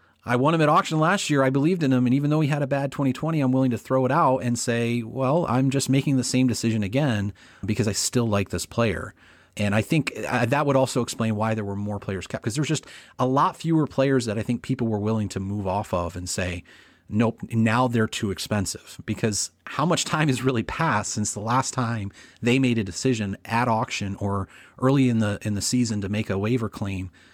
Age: 30-49